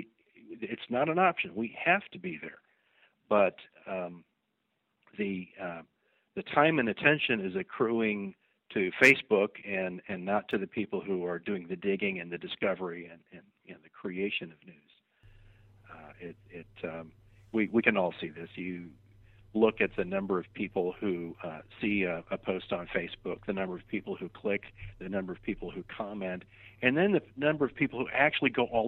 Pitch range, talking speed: 95-120 Hz, 185 wpm